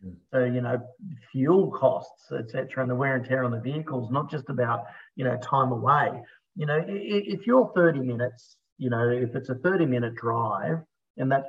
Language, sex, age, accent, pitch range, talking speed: English, male, 40-59, Australian, 125-150 Hz, 195 wpm